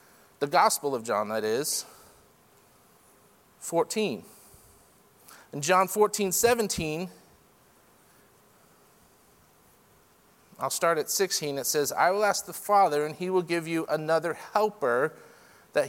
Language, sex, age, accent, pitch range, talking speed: English, male, 40-59, American, 135-180 Hz, 115 wpm